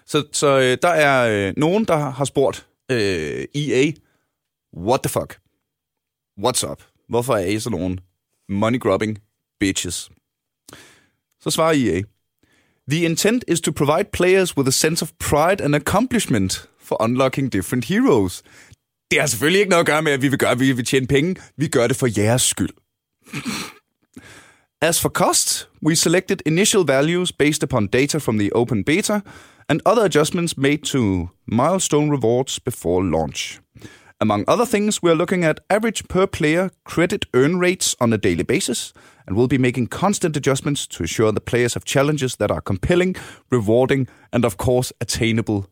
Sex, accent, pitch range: male, native, 120-165 Hz